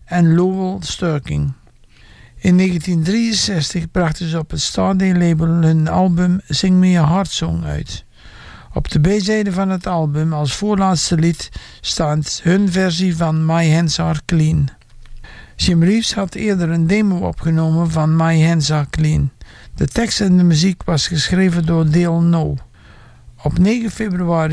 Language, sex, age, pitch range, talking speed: English, male, 60-79, 155-185 Hz, 150 wpm